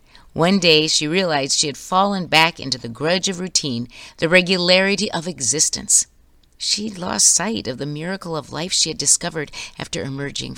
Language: English